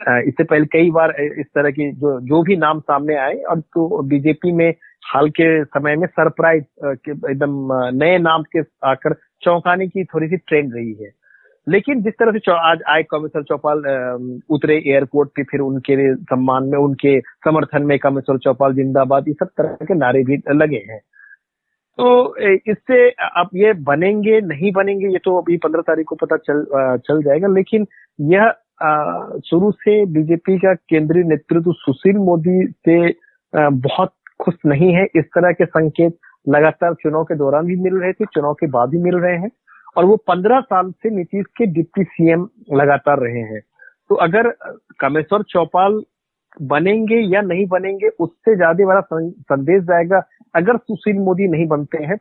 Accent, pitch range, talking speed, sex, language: native, 145-185 Hz, 170 wpm, male, Hindi